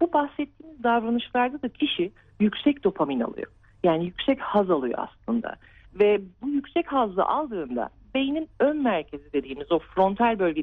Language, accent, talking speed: Turkish, native, 140 wpm